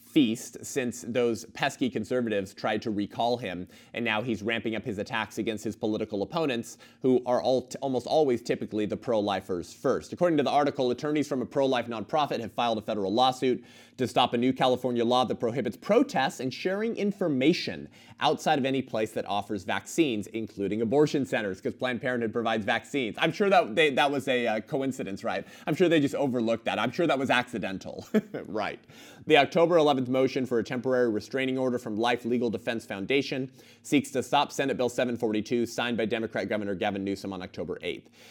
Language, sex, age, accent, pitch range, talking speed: English, male, 30-49, American, 110-130 Hz, 185 wpm